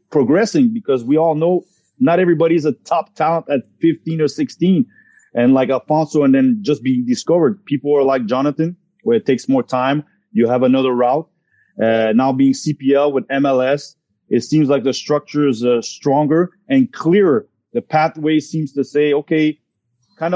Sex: male